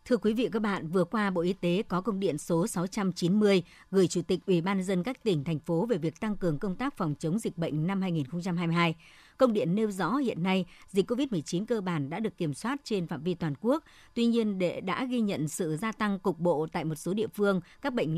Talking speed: 245 wpm